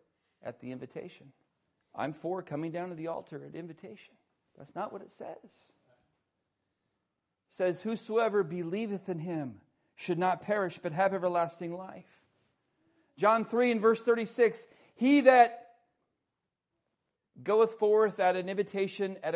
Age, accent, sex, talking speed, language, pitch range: 40-59, American, male, 135 wpm, English, 170-215 Hz